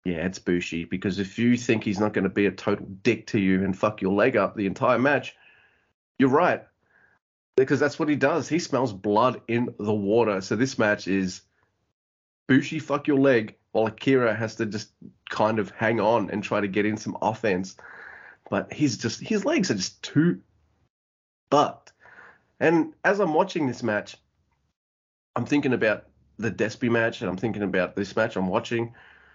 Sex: male